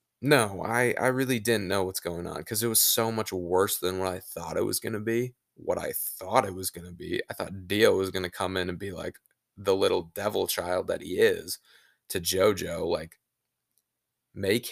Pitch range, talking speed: 90-115 Hz, 220 wpm